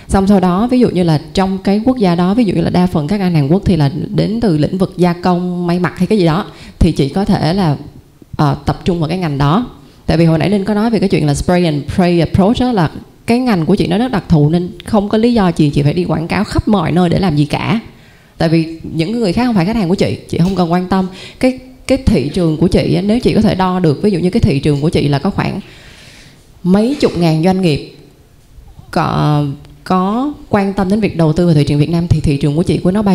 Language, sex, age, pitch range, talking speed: Vietnamese, female, 20-39, 160-205 Hz, 280 wpm